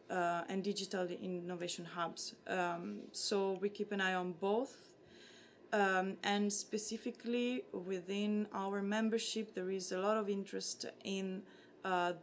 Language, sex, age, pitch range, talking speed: English, female, 20-39, 180-210 Hz, 130 wpm